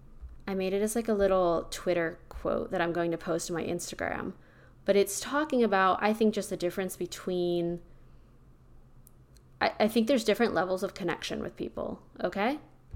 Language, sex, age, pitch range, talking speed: English, female, 20-39, 170-210 Hz, 175 wpm